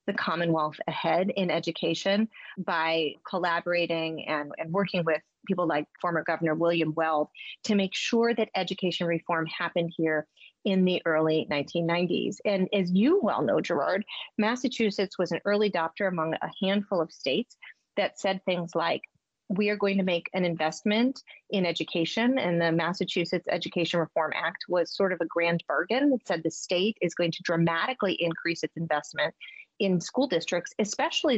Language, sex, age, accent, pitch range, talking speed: English, female, 30-49, American, 165-205 Hz, 165 wpm